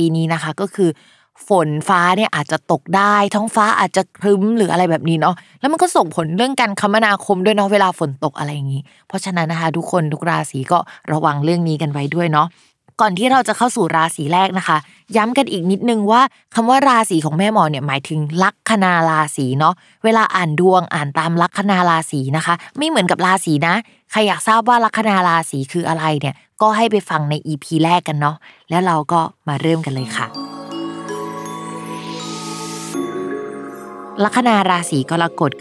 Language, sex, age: Thai, female, 20-39